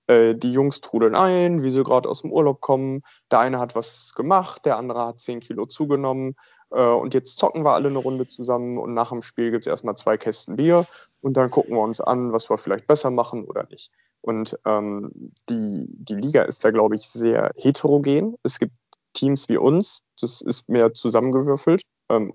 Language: German